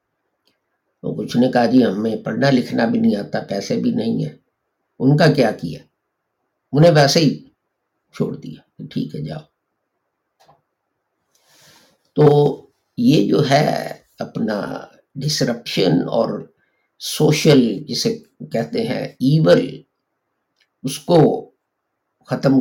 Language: English